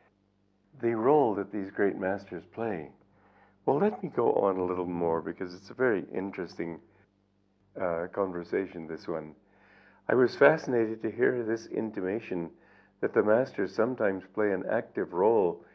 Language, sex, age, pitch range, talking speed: English, male, 60-79, 95-110 Hz, 150 wpm